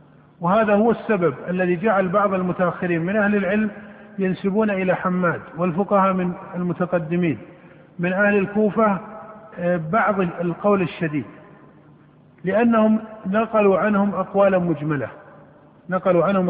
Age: 50-69